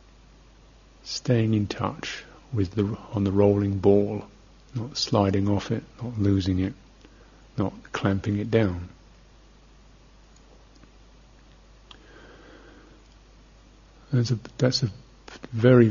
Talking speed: 95 wpm